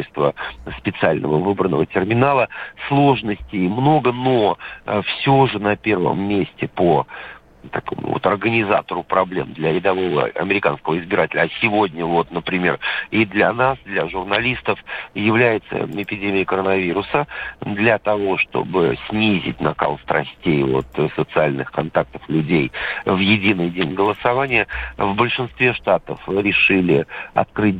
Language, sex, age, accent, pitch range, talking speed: Russian, male, 50-69, native, 95-120 Hz, 110 wpm